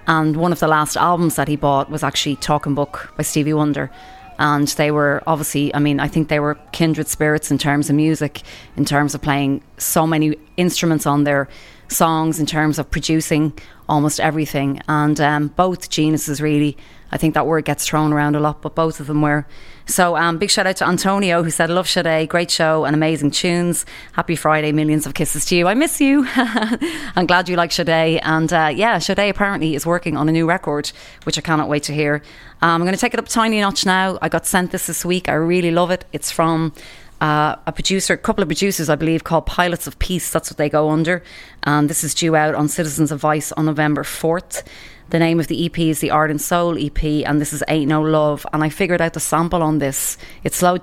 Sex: female